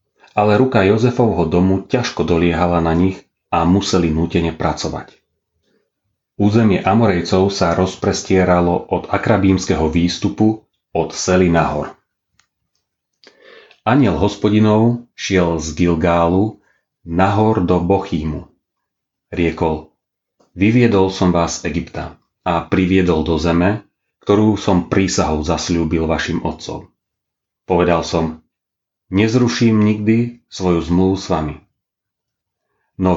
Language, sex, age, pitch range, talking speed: Slovak, male, 30-49, 85-100 Hz, 100 wpm